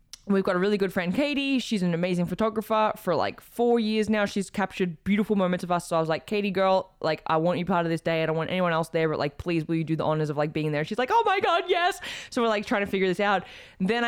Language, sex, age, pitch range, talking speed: English, female, 20-39, 160-190 Hz, 295 wpm